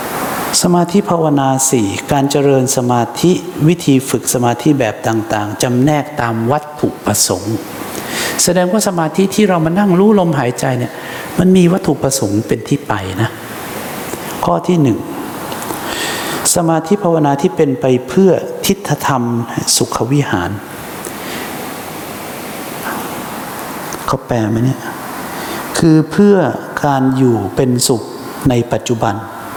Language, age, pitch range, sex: English, 60-79, 120-160 Hz, male